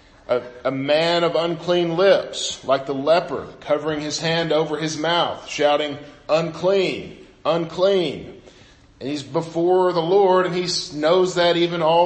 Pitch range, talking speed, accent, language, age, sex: 140-170 Hz, 140 wpm, American, English, 40-59, male